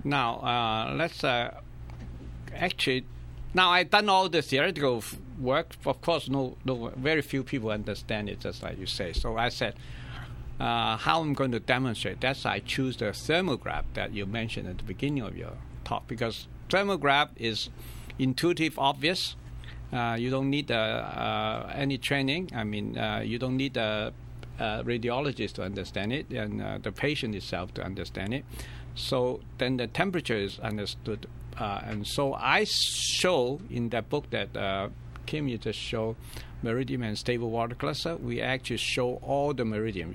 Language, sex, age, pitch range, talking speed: English, male, 60-79, 95-135 Hz, 170 wpm